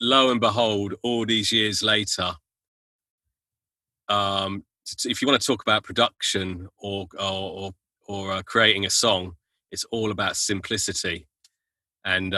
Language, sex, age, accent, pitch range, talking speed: English, male, 30-49, British, 95-115 Hz, 135 wpm